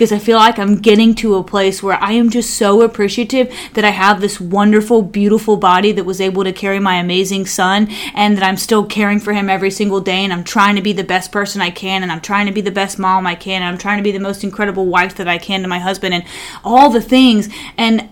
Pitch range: 190-230 Hz